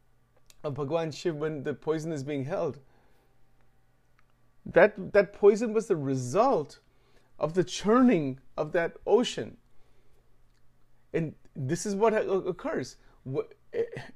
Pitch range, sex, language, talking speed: 135-205 Hz, male, English, 110 wpm